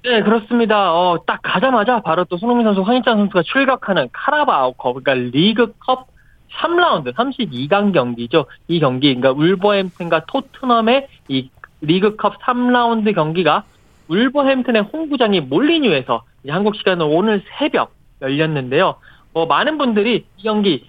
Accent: native